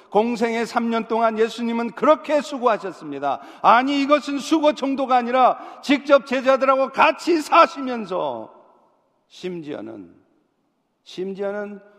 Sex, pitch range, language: male, 200-275 Hz, Korean